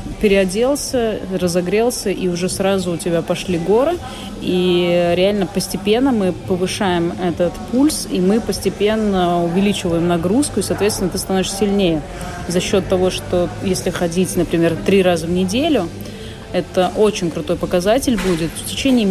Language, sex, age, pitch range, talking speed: Russian, female, 30-49, 170-195 Hz, 140 wpm